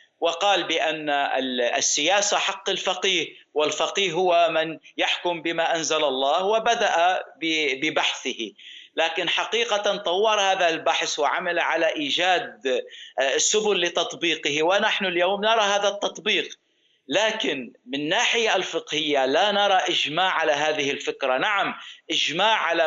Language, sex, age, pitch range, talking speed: Arabic, male, 50-69, 155-210 Hz, 110 wpm